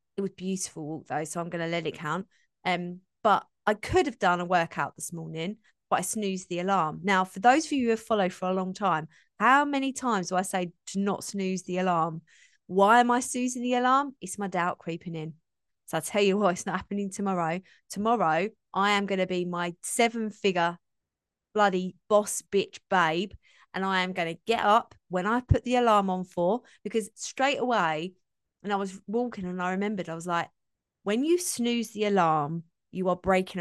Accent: British